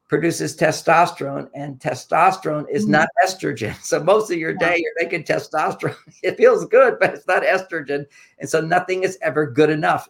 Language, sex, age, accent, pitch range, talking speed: English, male, 50-69, American, 140-175 Hz, 170 wpm